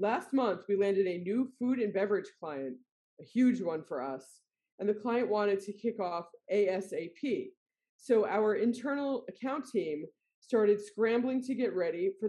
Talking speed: 165 wpm